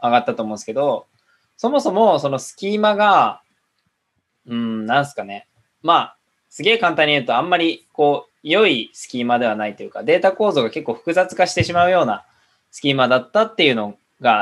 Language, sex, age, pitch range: Japanese, male, 20-39, 115-180 Hz